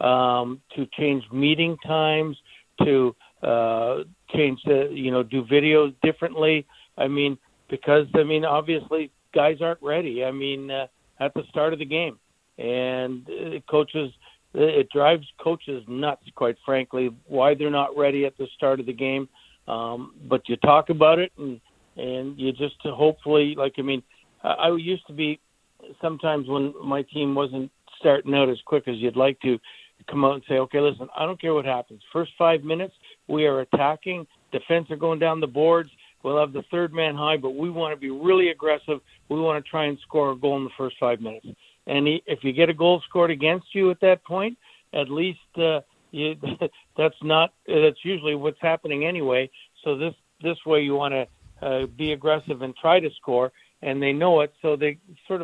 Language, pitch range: English, 135-160 Hz